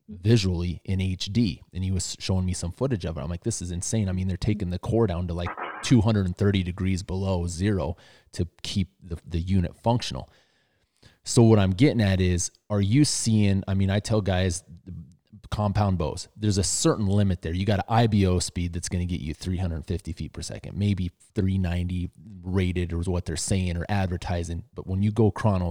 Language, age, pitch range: English, 30-49, 90-105 Hz